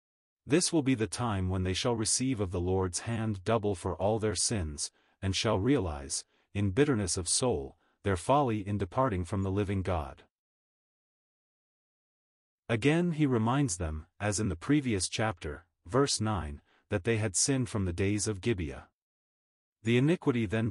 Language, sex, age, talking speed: English, male, 40-59, 160 wpm